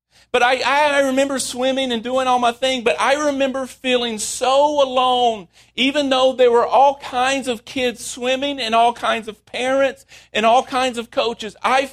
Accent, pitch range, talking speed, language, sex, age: American, 230-275 Hz, 180 wpm, English, male, 40-59